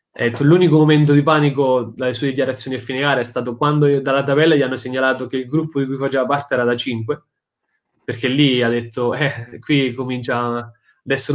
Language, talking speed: Italian, 195 wpm